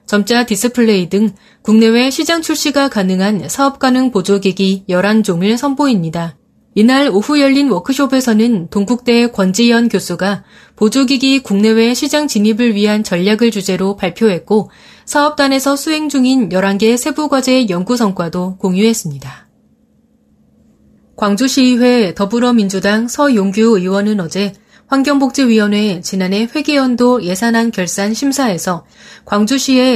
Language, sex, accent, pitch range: Korean, female, native, 195-255 Hz